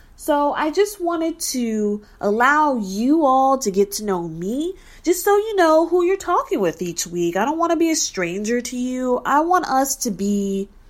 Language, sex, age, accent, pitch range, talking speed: English, female, 20-39, American, 205-330 Hz, 205 wpm